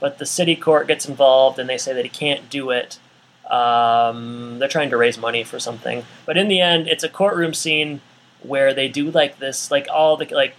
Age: 20-39